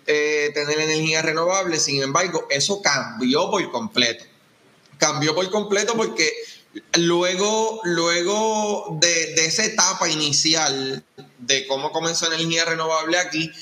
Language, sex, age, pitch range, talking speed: Spanish, male, 20-39, 150-180 Hz, 115 wpm